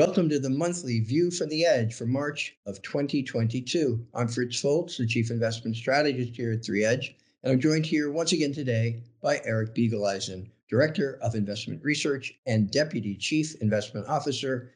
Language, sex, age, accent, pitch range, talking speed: English, male, 50-69, American, 110-145 Hz, 165 wpm